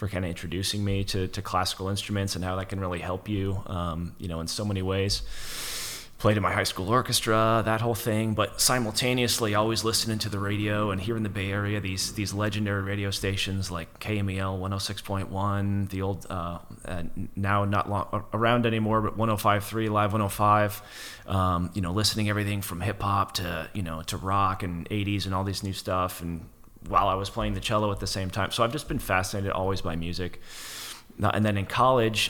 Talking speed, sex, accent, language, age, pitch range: 205 wpm, male, American, English, 30-49, 95-105 Hz